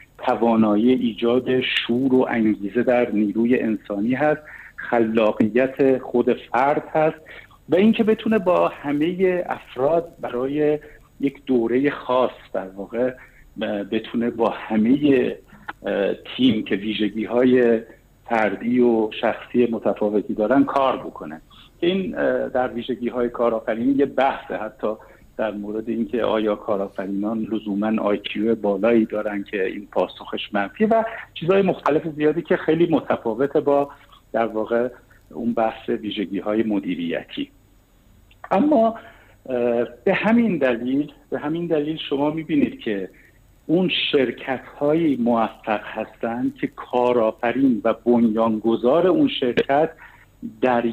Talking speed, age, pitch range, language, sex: 110 wpm, 50-69, 110-155 Hz, Persian, male